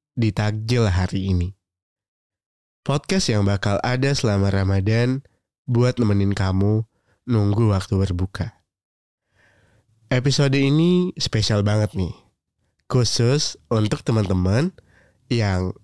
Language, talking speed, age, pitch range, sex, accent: Indonesian, 95 wpm, 20-39, 100-130 Hz, male, native